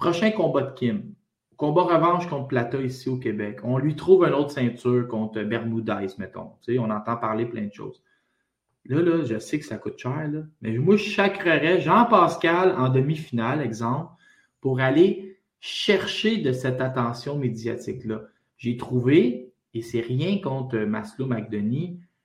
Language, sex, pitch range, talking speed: French, male, 120-170 Hz, 155 wpm